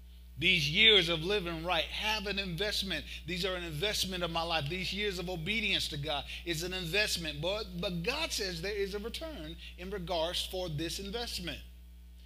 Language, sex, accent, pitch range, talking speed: English, male, American, 155-210 Hz, 180 wpm